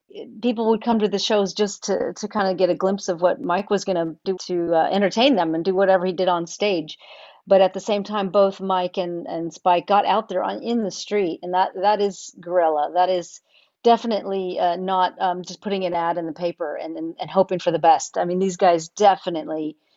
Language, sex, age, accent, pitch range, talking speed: English, female, 40-59, American, 175-210 Hz, 235 wpm